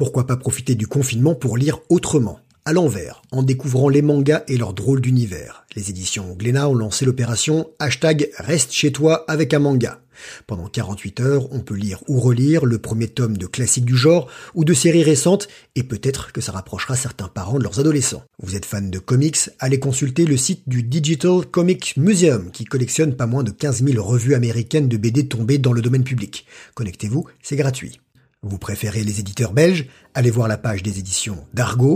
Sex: male